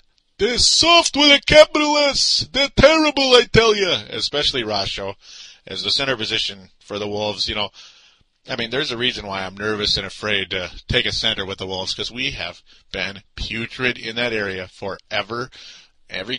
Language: English